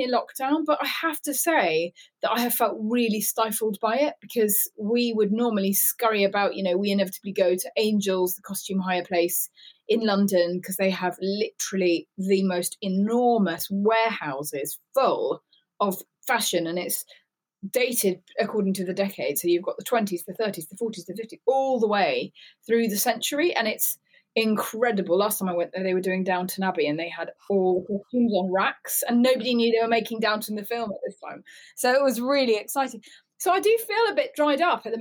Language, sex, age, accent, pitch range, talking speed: English, female, 20-39, British, 180-230 Hz, 195 wpm